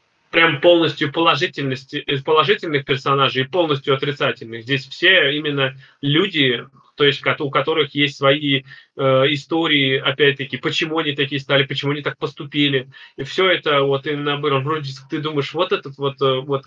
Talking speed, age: 145 wpm, 20-39